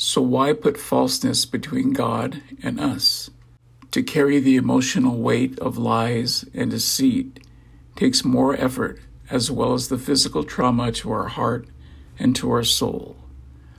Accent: American